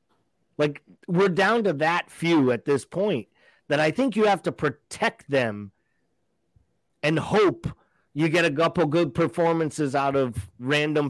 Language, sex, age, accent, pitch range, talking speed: English, male, 30-49, American, 130-160 Hz, 150 wpm